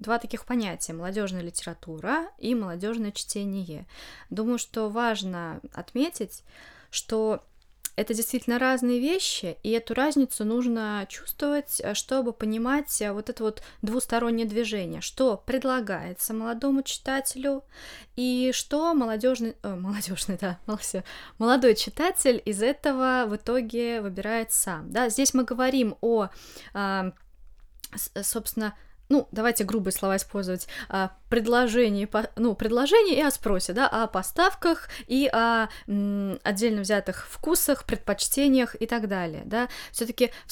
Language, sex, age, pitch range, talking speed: Russian, female, 20-39, 195-245 Hz, 115 wpm